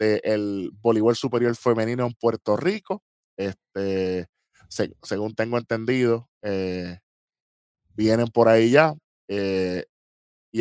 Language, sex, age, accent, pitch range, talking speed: Spanish, male, 10-29, American, 100-120 Hz, 115 wpm